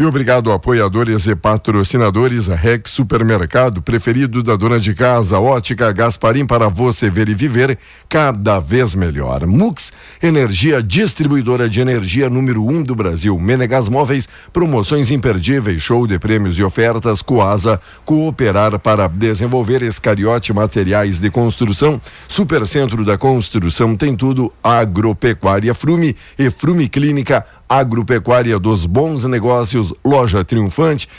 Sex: male